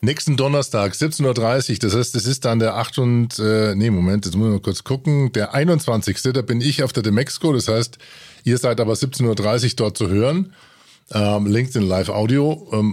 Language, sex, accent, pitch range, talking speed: German, male, German, 110-135 Hz, 200 wpm